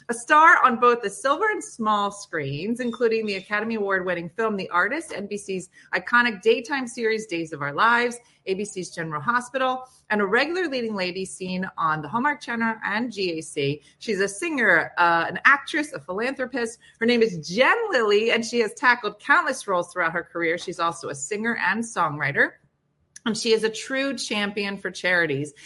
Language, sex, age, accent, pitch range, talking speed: English, female, 30-49, American, 175-240 Hz, 175 wpm